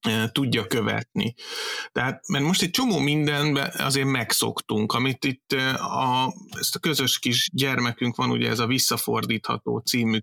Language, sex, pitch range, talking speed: Hungarian, male, 115-145 Hz, 140 wpm